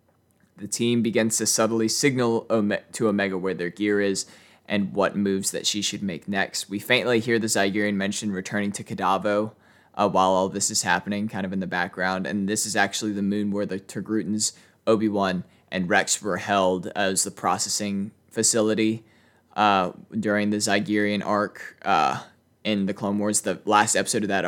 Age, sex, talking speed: 20-39, male, 180 wpm